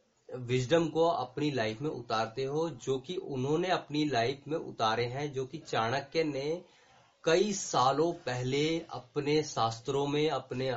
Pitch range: 135-175 Hz